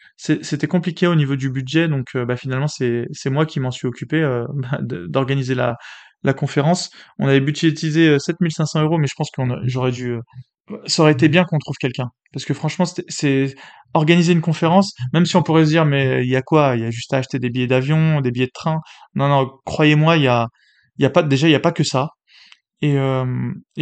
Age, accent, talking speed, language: 20-39, French, 230 wpm, French